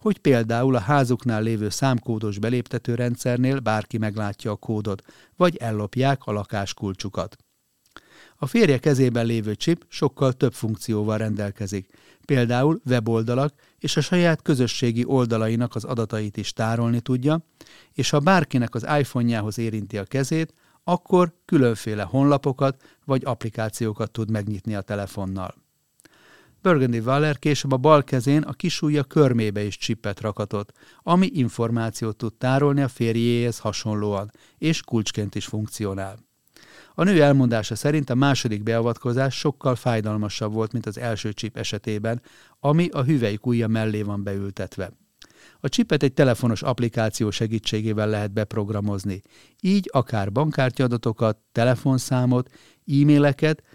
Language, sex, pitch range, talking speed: Hungarian, male, 110-135 Hz, 125 wpm